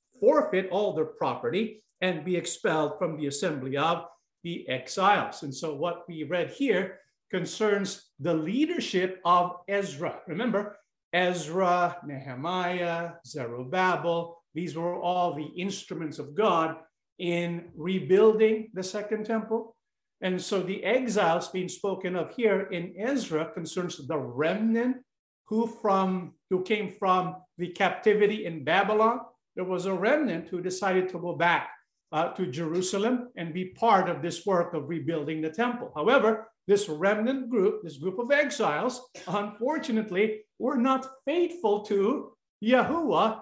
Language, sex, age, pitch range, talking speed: English, male, 50-69, 175-220 Hz, 135 wpm